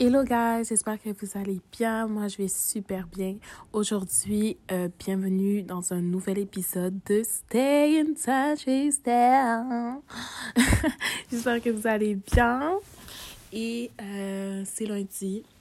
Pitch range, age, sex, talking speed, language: 190-230 Hz, 20-39, female, 125 wpm, French